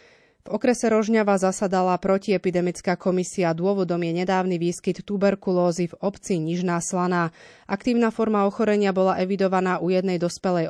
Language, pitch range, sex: Slovak, 175-205 Hz, female